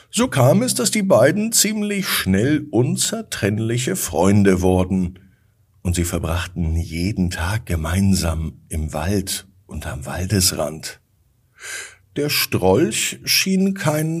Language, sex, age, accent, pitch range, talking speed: German, male, 50-69, German, 85-120 Hz, 110 wpm